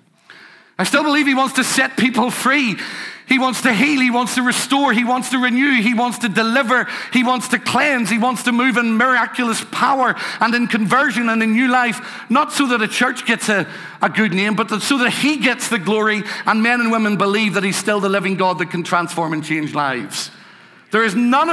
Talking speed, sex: 225 wpm, male